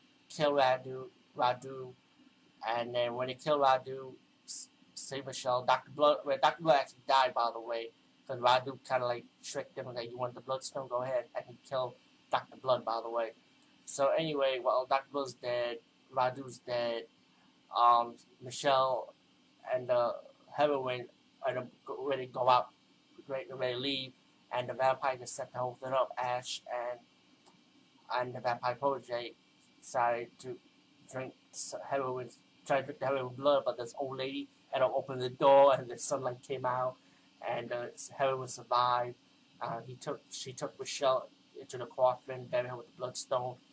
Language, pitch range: English, 120-135 Hz